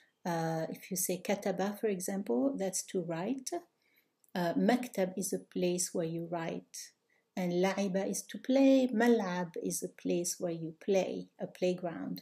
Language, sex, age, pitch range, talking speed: Arabic, female, 60-79, 180-240 Hz, 155 wpm